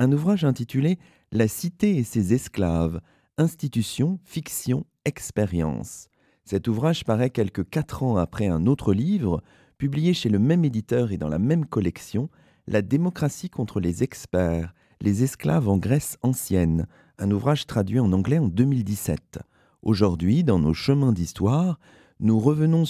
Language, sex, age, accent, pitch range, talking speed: French, male, 40-59, French, 95-140 Hz, 155 wpm